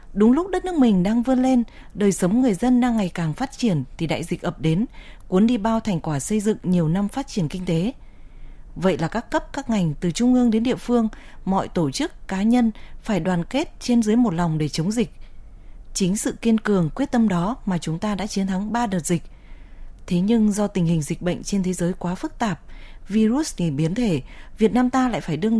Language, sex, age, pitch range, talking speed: Vietnamese, female, 20-39, 170-230 Hz, 235 wpm